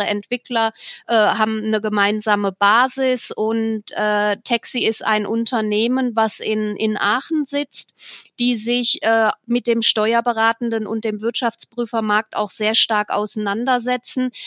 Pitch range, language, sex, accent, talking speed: 215-245 Hz, German, female, German, 125 wpm